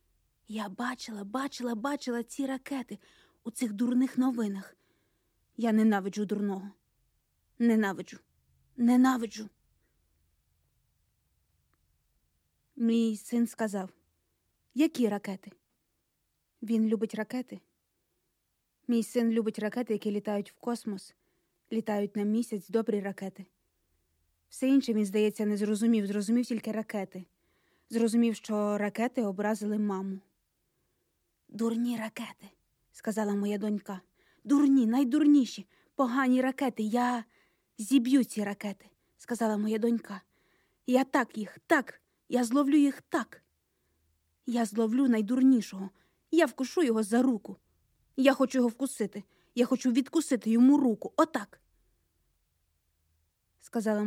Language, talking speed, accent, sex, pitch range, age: Ukrainian, 105 wpm, native, female, 190-245 Hz, 20-39